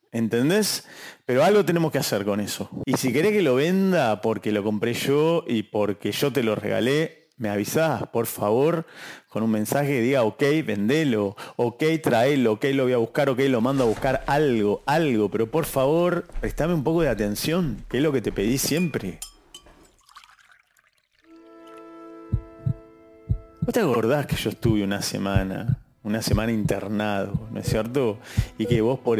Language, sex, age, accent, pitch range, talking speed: English, male, 30-49, Argentinian, 110-135 Hz, 170 wpm